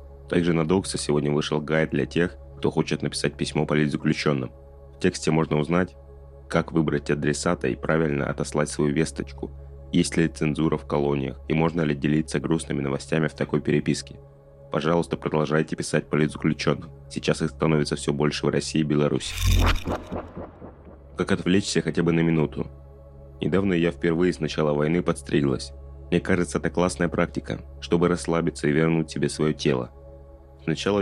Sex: male